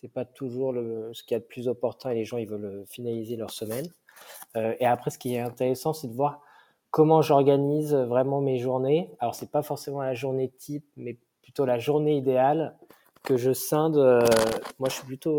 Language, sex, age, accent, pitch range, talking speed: French, male, 20-39, French, 120-145 Hz, 215 wpm